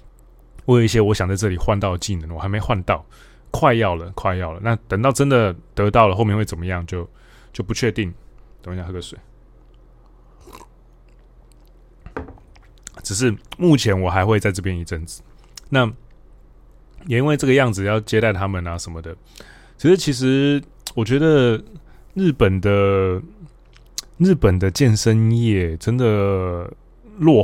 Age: 20-39